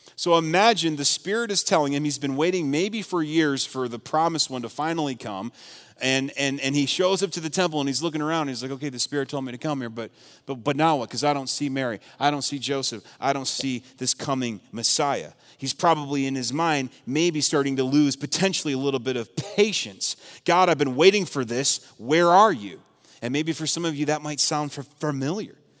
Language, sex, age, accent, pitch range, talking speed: English, male, 30-49, American, 130-170 Hz, 230 wpm